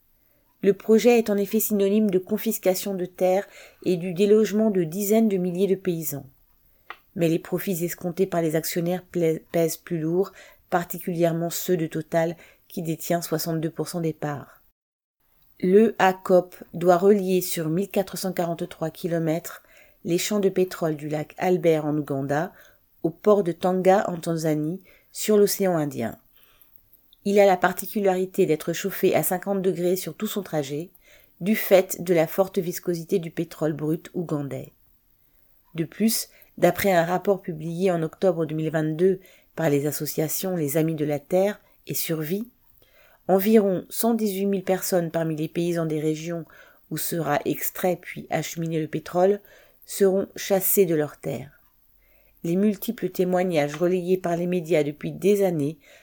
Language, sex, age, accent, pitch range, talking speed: French, female, 40-59, French, 160-195 Hz, 145 wpm